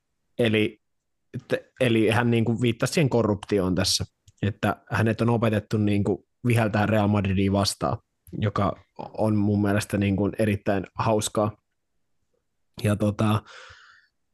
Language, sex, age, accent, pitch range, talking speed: Finnish, male, 20-39, native, 105-115 Hz, 120 wpm